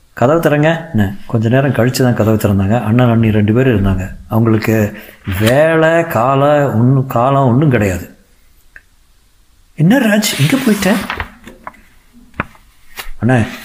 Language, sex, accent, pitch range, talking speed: Tamil, male, native, 110-140 Hz, 115 wpm